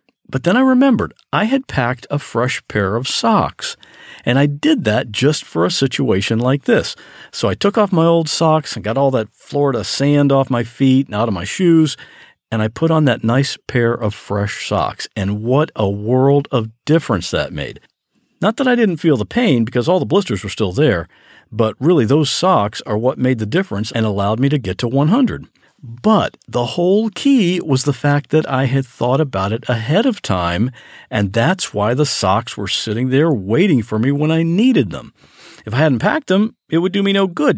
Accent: American